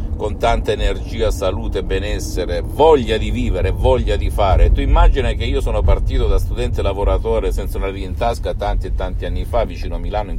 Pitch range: 85-110 Hz